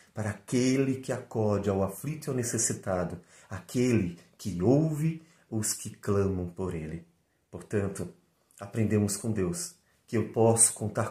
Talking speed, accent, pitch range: 135 wpm, Brazilian, 90-115 Hz